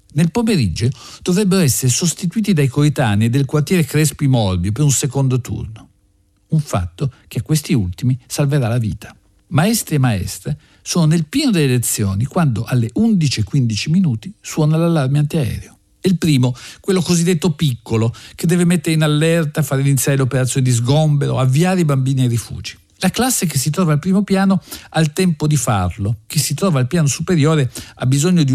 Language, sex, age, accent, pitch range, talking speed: Italian, male, 50-69, native, 115-160 Hz, 170 wpm